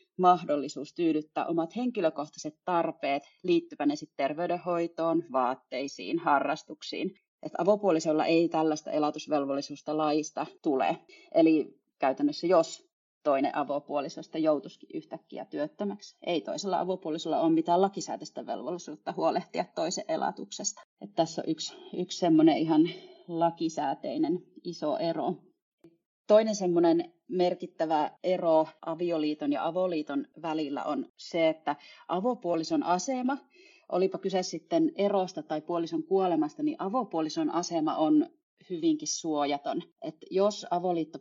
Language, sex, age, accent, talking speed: Finnish, female, 30-49, native, 105 wpm